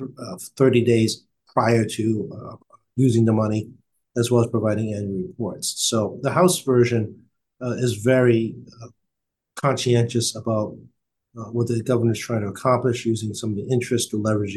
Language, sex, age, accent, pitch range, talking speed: English, male, 50-69, American, 105-125 Hz, 160 wpm